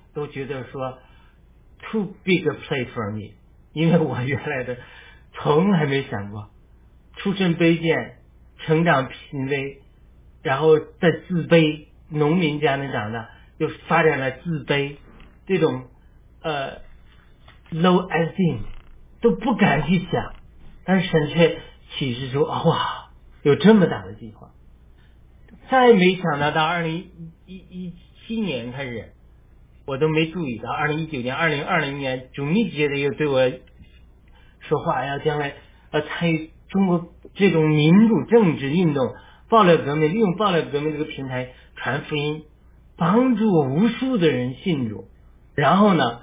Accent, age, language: native, 50-69, Chinese